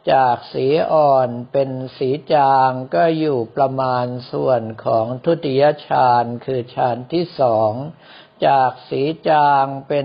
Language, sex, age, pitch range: Thai, male, 60-79, 125-155 Hz